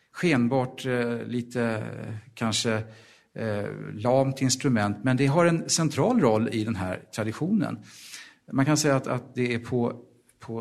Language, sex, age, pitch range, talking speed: Swedish, male, 50-69, 115-150 Hz, 135 wpm